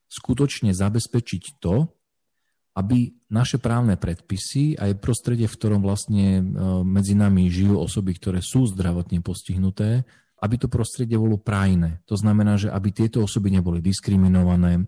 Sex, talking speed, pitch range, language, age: male, 135 wpm, 90-110 Hz, Slovak, 40-59